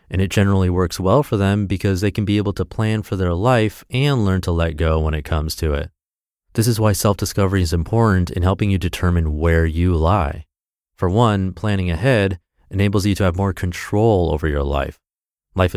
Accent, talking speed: American, 205 wpm